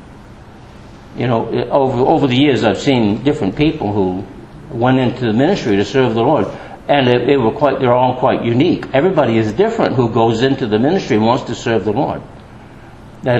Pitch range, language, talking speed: 115-155 Hz, English, 185 wpm